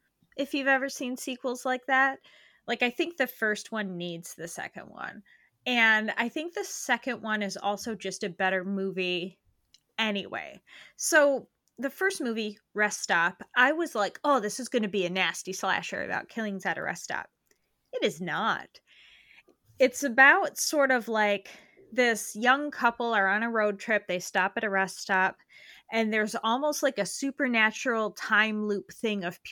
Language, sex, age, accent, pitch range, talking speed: English, female, 20-39, American, 190-255 Hz, 175 wpm